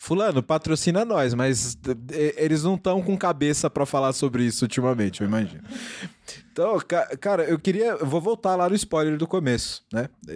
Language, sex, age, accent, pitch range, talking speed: Portuguese, male, 20-39, Brazilian, 110-145 Hz, 175 wpm